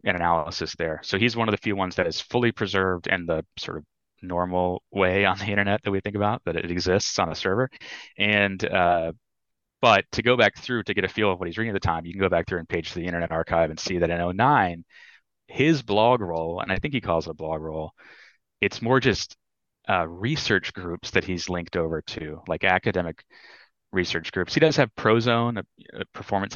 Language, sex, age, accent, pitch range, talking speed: English, male, 30-49, American, 85-110 Hz, 225 wpm